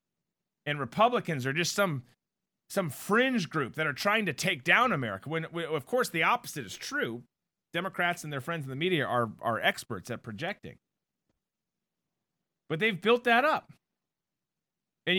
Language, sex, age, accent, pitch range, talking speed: English, male, 40-59, American, 130-185 Hz, 160 wpm